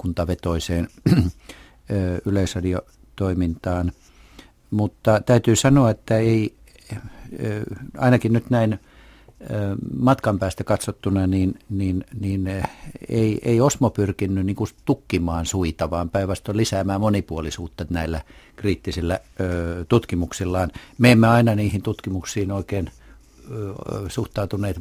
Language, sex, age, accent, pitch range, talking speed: Finnish, male, 60-79, native, 90-115 Hz, 85 wpm